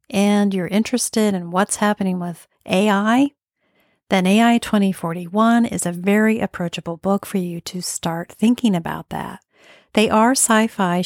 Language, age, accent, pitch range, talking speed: English, 40-59, American, 180-220 Hz, 140 wpm